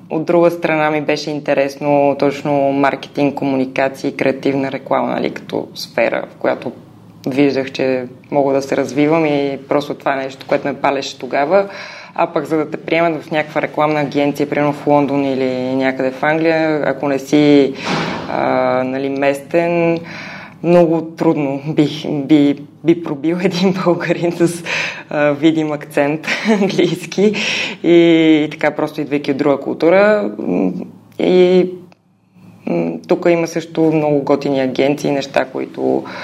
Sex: female